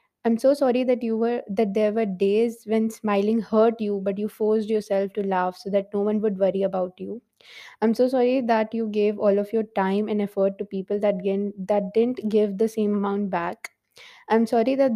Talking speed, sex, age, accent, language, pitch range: 210 wpm, female, 20-39, Indian, English, 205-250 Hz